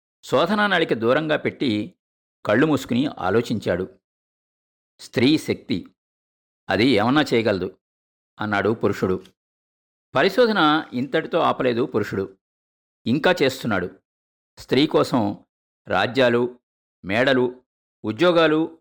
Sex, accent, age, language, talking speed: male, native, 50-69, Telugu, 75 wpm